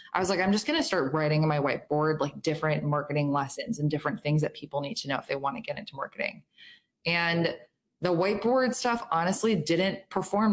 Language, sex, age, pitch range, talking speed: English, female, 20-39, 150-170 Hz, 215 wpm